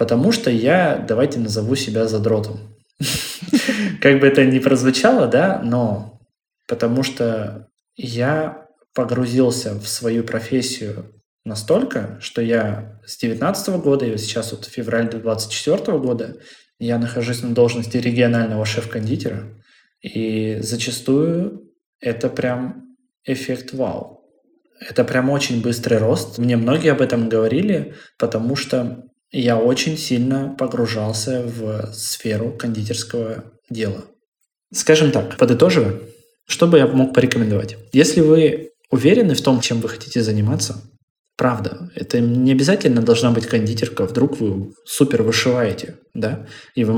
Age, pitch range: 20-39, 110-130 Hz